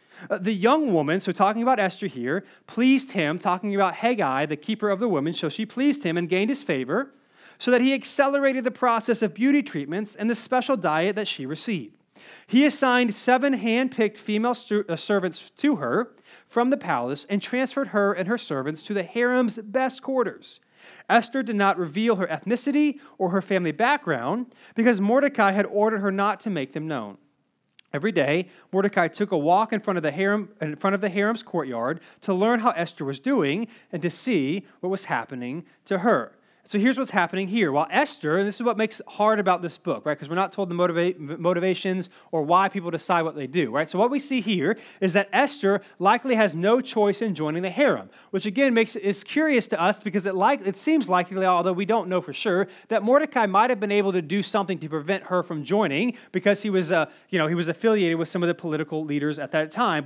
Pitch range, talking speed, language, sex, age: 180-240 Hz, 220 wpm, English, male, 30-49